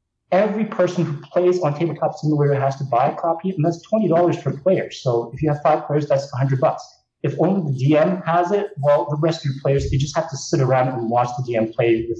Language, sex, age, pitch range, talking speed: English, male, 30-49, 125-165 Hz, 245 wpm